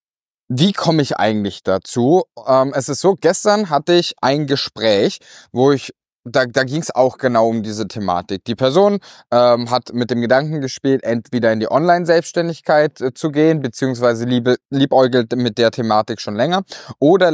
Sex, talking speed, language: male, 150 wpm, German